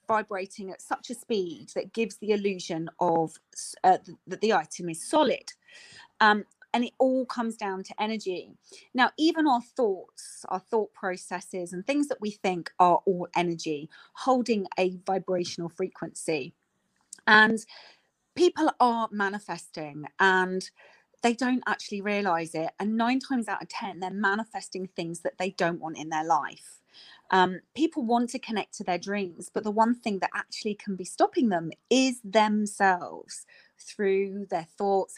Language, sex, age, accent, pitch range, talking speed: English, female, 30-49, British, 185-245 Hz, 155 wpm